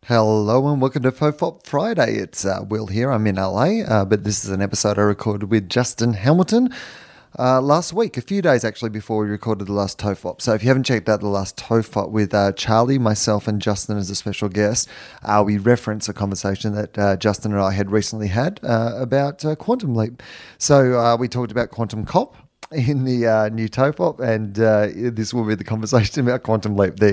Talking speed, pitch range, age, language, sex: 215 wpm, 105-125 Hz, 30-49, English, male